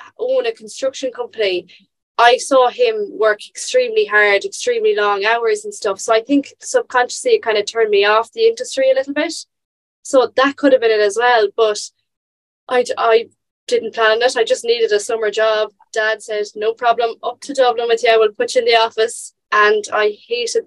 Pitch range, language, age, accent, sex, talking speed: 205-305 Hz, English, 20-39, Irish, female, 200 wpm